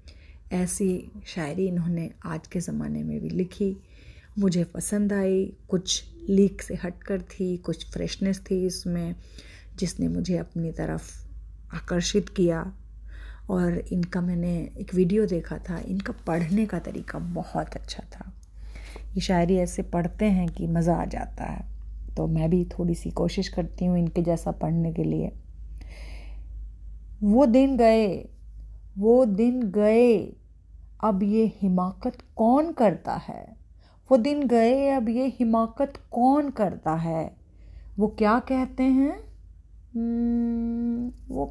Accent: native